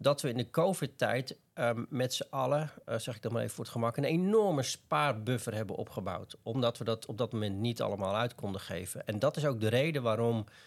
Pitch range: 110-135 Hz